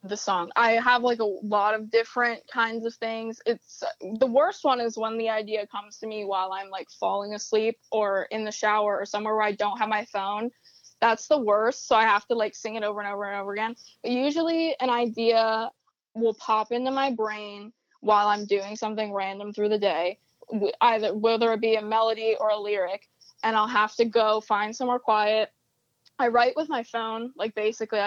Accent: American